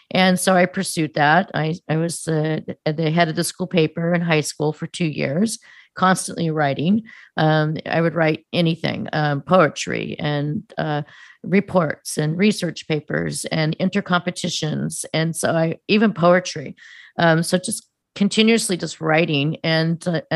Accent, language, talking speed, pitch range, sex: American, English, 150 wpm, 150-180 Hz, female